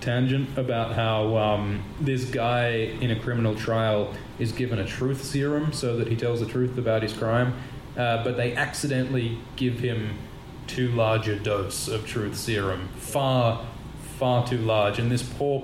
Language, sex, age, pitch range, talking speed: English, male, 20-39, 110-130 Hz, 170 wpm